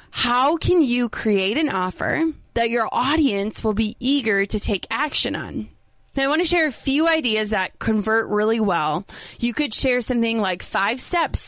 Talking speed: 185 wpm